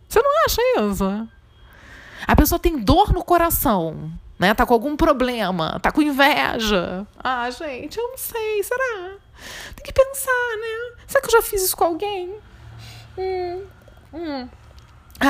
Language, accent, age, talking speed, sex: Portuguese, Brazilian, 20-39, 150 wpm, female